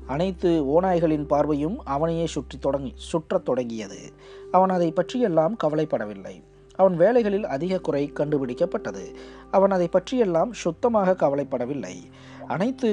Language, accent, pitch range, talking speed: Tamil, native, 140-190 Hz, 105 wpm